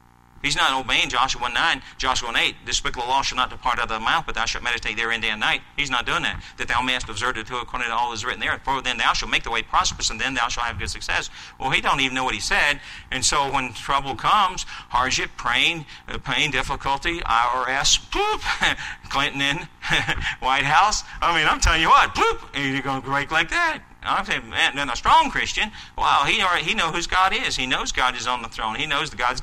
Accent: American